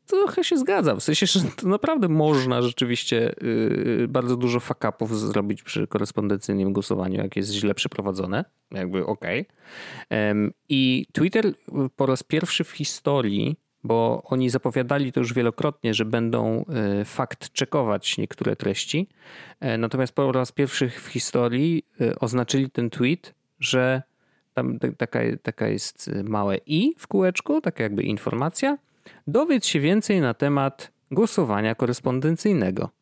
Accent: native